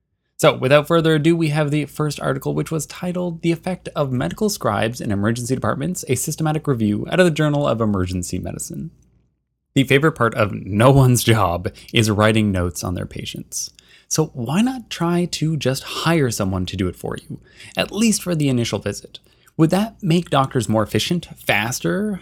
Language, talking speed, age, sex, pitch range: English, 185 wpm, 20-39, male, 110-170 Hz